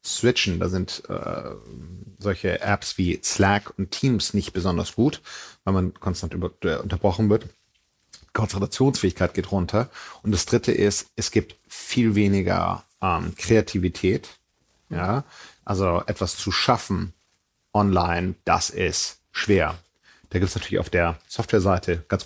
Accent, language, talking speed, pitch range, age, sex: German, German, 125 wpm, 90-105 Hz, 40-59, male